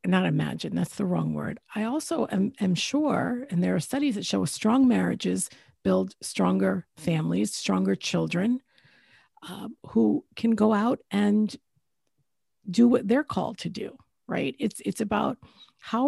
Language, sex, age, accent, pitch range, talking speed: English, female, 50-69, American, 170-235 Hz, 155 wpm